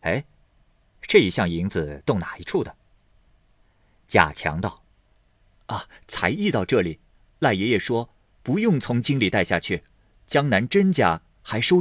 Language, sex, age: Chinese, male, 50-69